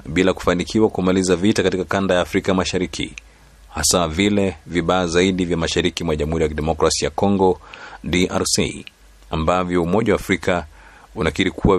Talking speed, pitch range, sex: 145 wpm, 80-95 Hz, male